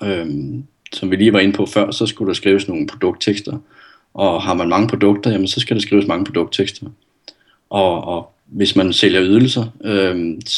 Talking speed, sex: 180 wpm, male